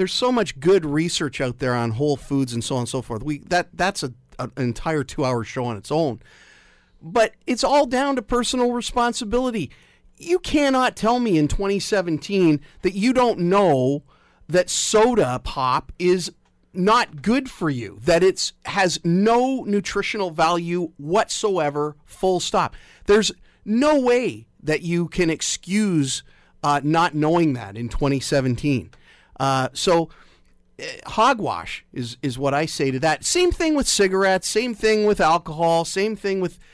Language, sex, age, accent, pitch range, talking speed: English, male, 40-59, American, 130-195 Hz, 160 wpm